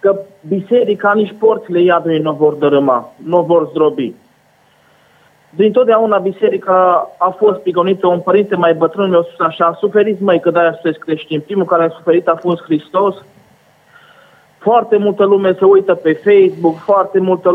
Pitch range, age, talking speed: 170-205 Hz, 20-39, 160 wpm